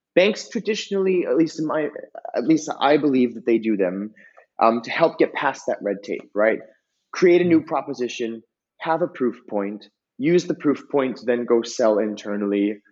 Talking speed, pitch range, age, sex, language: 180 wpm, 100-135 Hz, 30-49, male, Swedish